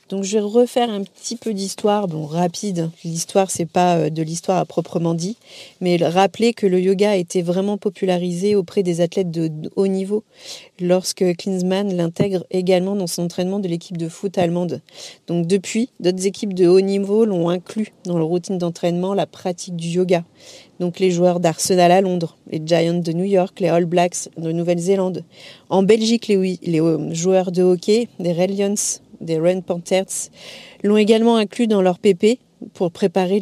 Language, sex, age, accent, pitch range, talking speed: French, female, 40-59, French, 175-200 Hz, 175 wpm